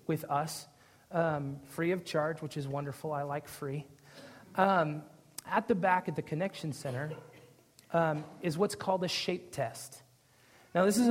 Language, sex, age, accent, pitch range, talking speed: English, male, 30-49, American, 145-180 Hz, 160 wpm